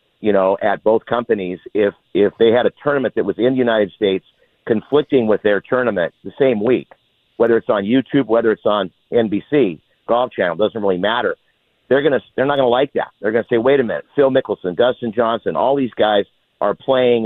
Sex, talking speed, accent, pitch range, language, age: male, 205 wpm, American, 110-135 Hz, English, 50-69